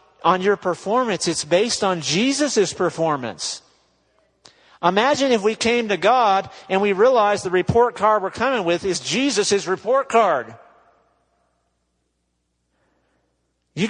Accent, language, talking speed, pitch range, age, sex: American, English, 120 wpm, 130-175 Hz, 50-69, male